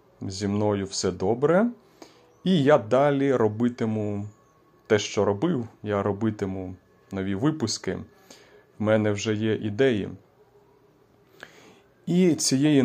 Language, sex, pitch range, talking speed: Ukrainian, male, 105-135 Hz, 105 wpm